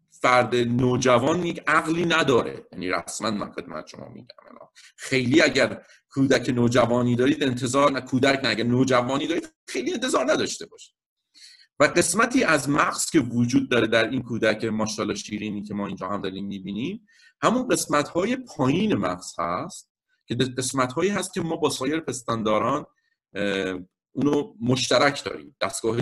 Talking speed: 140 wpm